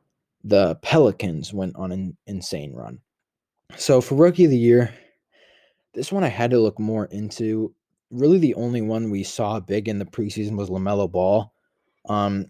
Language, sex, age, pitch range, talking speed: English, male, 20-39, 100-120 Hz, 170 wpm